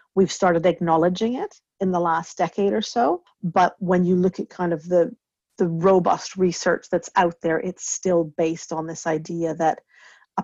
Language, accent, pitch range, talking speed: English, American, 170-195 Hz, 185 wpm